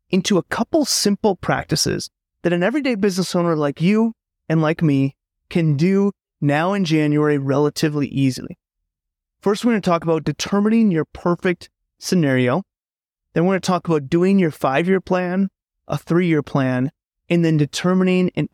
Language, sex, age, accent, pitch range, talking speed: English, male, 30-49, American, 140-190 Hz, 150 wpm